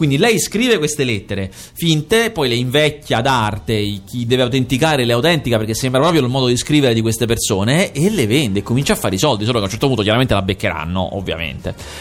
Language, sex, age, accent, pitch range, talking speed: Italian, male, 30-49, native, 110-165 Hz, 215 wpm